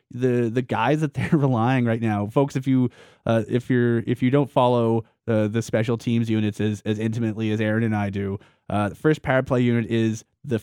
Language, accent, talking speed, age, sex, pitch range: English, American, 225 wpm, 30-49, male, 110-125 Hz